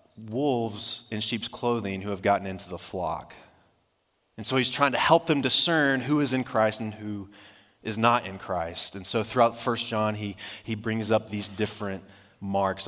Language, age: English, 30-49